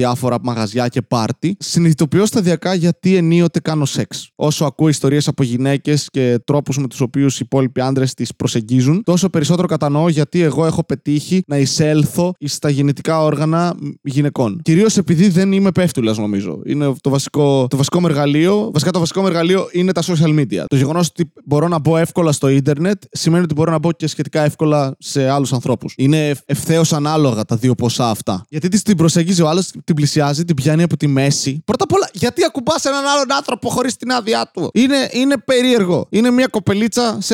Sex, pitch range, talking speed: male, 140-185 Hz, 185 wpm